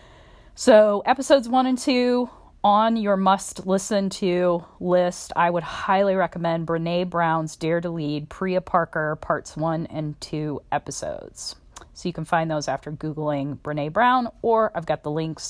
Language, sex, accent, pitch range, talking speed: English, female, American, 160-195 Hz, 160 wpm